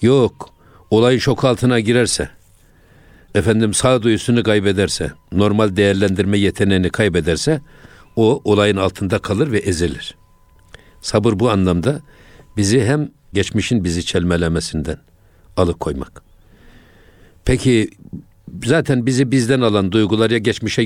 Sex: male